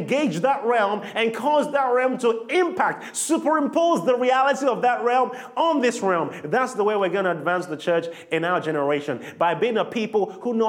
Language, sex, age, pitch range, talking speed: English, male, 30-49, 155-235 Hz, 200 wpm